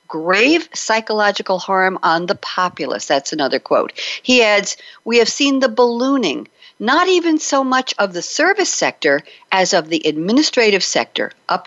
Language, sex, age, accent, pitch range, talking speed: English, female, 50-69, American, 165-270 Hz, 155 wpm